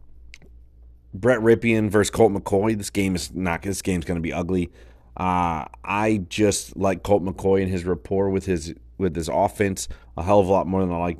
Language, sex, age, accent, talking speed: English, male, 30-49, American, 200 wpm